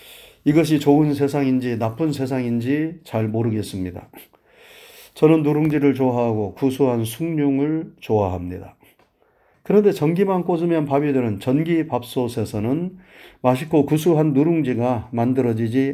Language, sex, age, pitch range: Korean, male, 40-59, 120-170 Hz